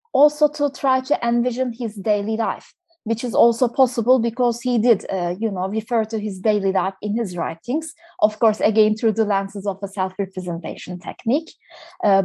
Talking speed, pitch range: 180 wpm, 210-260 Hz